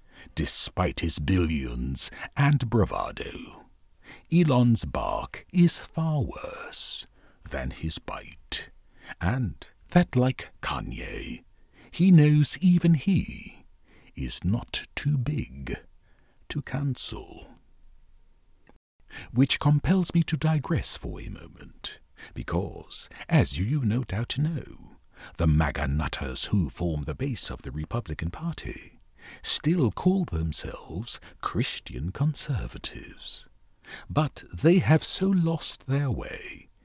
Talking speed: 105 wpm